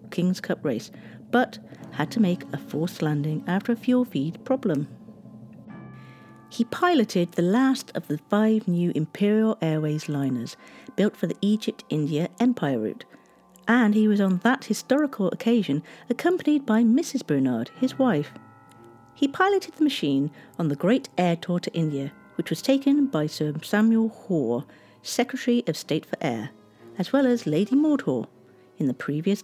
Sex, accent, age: female, British, 50-69